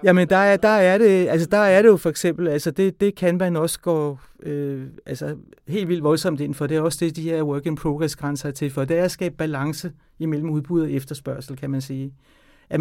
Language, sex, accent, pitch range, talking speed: Danish, male, native, 155-190 Hz, 240 wpm